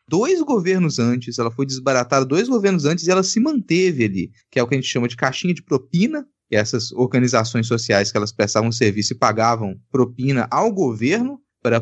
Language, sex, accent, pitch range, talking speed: Portuguese, male, Brazilian, 110-170 Hz, 195 wpm